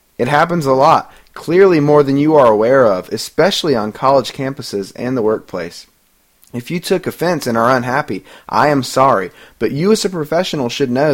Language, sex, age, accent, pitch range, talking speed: English, male, 20-39, American, 125-185 Hz, 190 wpm